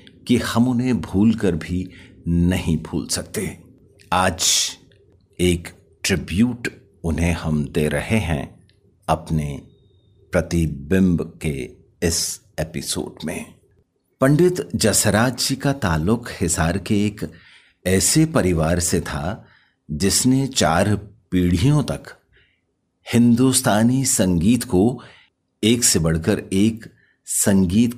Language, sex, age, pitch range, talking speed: Hindi, male, 50-69, 90-120 Hz, 100 wpm